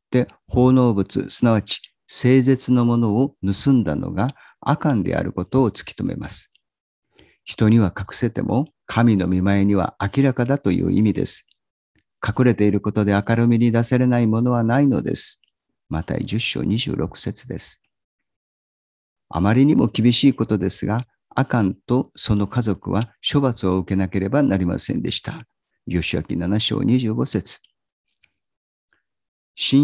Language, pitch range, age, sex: Japanese, 95-125 Hz, 50-69, male